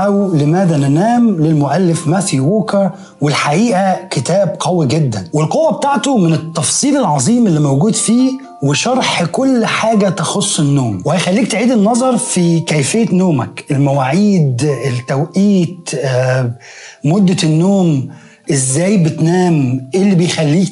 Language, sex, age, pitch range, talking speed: Arabic, male, 30-49, 145-205 Hz, 110 wpm